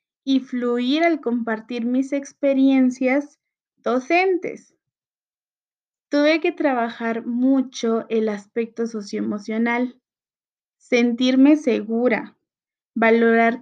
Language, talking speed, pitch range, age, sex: Spanish, 75 wpm, 225-270 Hz, 20-39, female